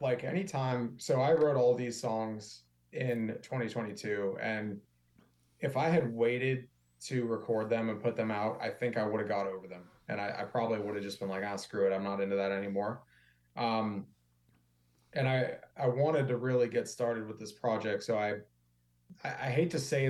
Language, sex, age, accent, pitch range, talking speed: English, male, 20-39, American, 105-125 Hz, 195 wpm